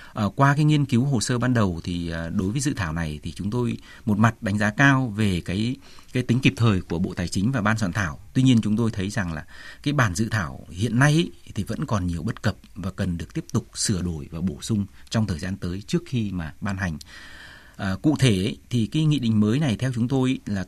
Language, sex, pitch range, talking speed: Vietnamese, male, 95-140 Hz, 250 wpm